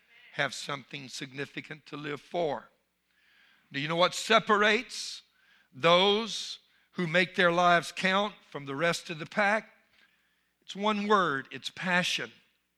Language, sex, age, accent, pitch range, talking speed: English, male, 60-79, American, 145-180 Hz, 130 wpm